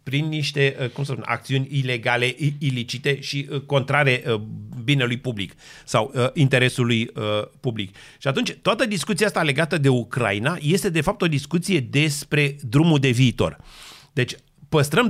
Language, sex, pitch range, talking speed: Romanian, male, 125-170 Hz, 135 wpm